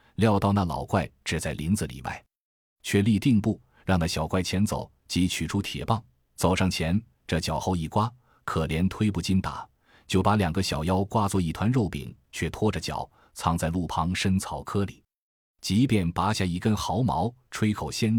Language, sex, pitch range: Chinese, male, 80-110 Hz